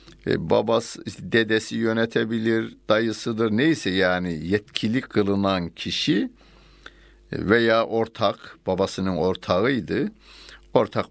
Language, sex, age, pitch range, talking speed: Turkish, male, 60-79, 85-110 Hz, 75 wpm